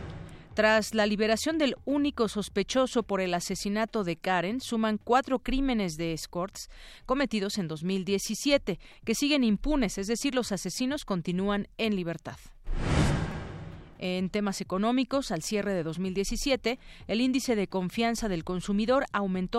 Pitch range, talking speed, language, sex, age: 185-245 Hz, 130 wpm, Spanish, female, 40-59